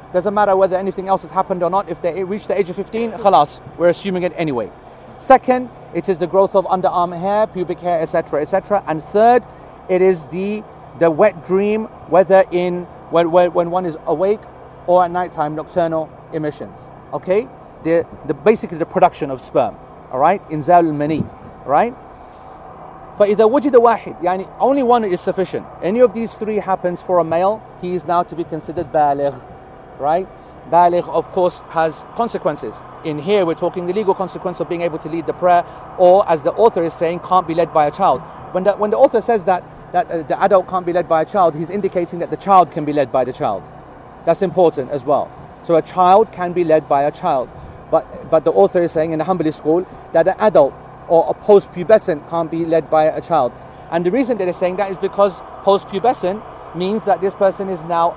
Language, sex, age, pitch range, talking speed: English, male, 40-59, 165-195 Hz, 205 wpm